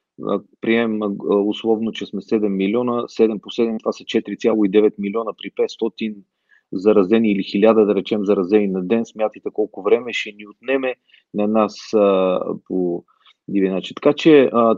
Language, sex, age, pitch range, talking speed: Bulgarian, male, 40-59, 105-130 Hz, 155 wpm